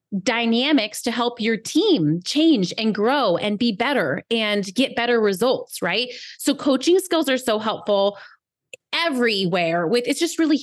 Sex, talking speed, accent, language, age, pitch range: female, 150 wpm, American, English, 20-39, 205-285 Hz